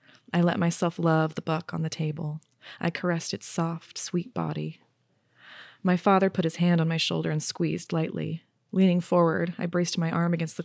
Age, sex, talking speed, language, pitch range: 20-39, female, 190 wpm, English, 160-180 Hz